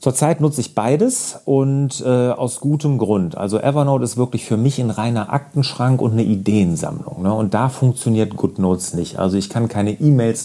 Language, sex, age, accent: German, male, 40-59, German